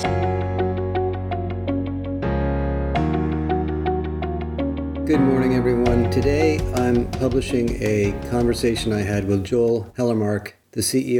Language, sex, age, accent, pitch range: English, male, 50-69, American, 105-130 Hz